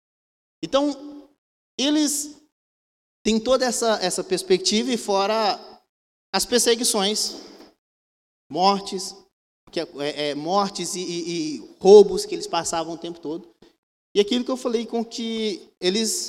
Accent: Brazilian